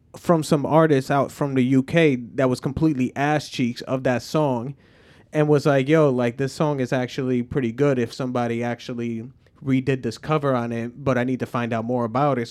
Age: 20-39